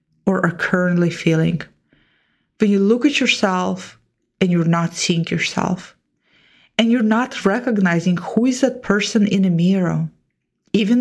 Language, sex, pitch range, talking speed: English, female, 180-225 Hz, 140 wpm